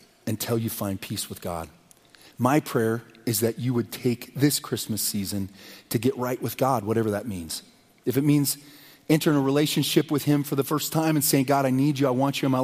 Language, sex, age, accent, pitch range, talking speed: English, male, 30-49, American, 115-140 Hz, 225 wpm